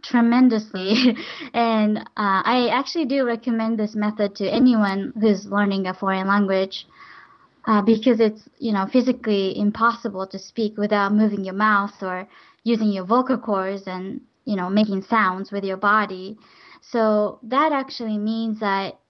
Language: Japanese